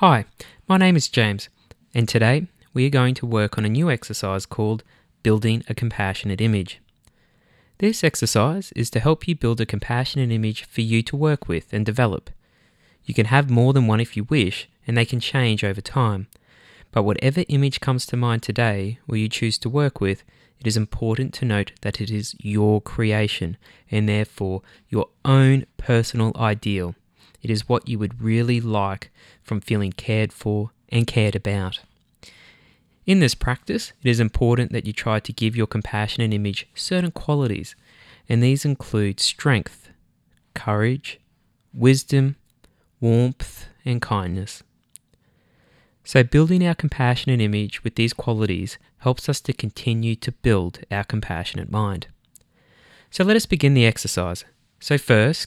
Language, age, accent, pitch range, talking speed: English, 20-39, Australian, 105-130 Hz, 160 wpm